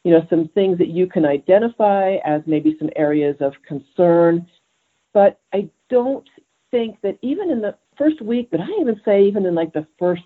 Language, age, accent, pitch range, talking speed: English, 50-69, American, 160-210 Hz, 195 wpm